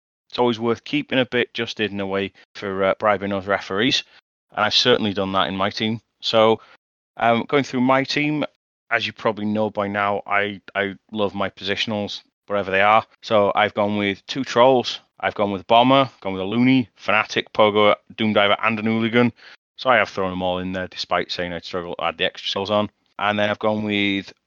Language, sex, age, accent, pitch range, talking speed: English, male, 30-49, British, 100-115 Hz, 210 wpm